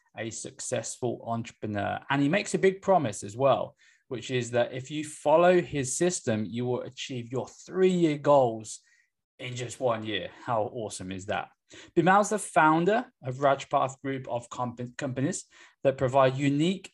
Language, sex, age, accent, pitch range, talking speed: English, male, 20-39, British, 120-155 Hz, 165 wpm